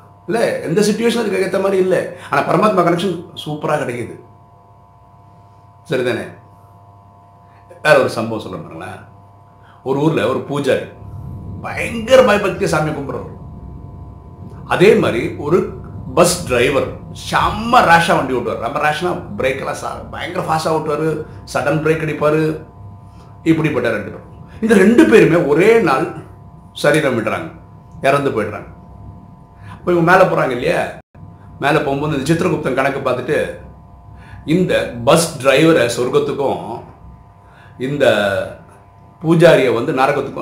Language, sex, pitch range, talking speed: Tamil, male, 100-165 Hz, 75 wpm